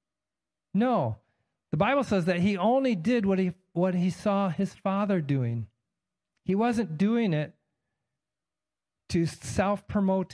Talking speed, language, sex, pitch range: 130 wpm, English, male, 130-170 Hz